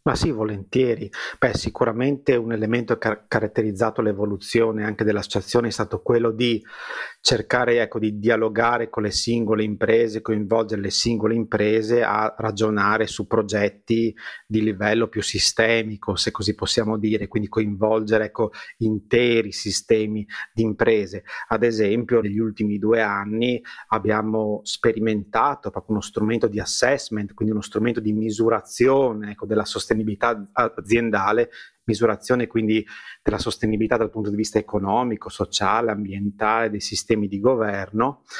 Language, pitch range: Italian, 105-115 Hz